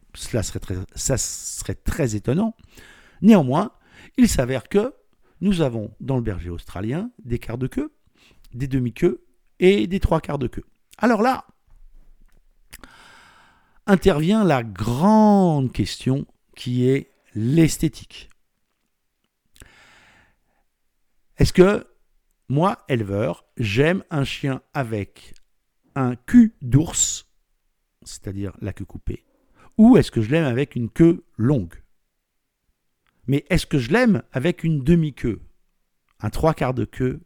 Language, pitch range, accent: French, 110-180 Hz, French